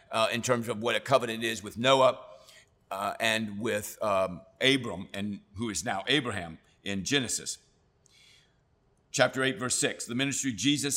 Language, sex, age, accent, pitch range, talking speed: English, male, 60-79, American, 115-140 Hz, 160 wpm